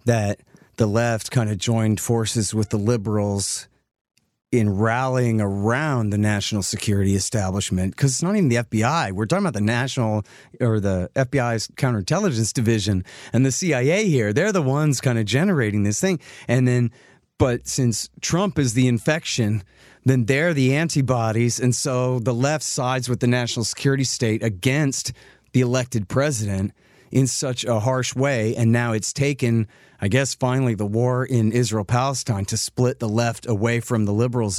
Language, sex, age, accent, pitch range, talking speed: English, male, 40-59, American, 110-130 Hz, 165 wpm